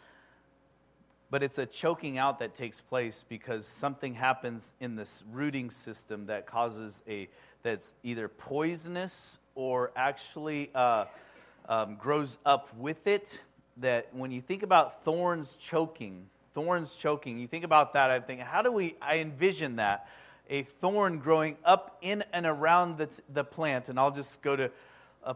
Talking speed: 155 wpm